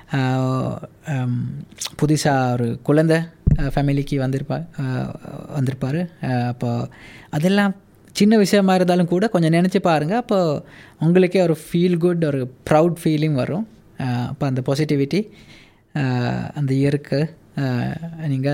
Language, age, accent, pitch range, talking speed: English, 20-39, Indian, 135-180 Hz, 135 wpm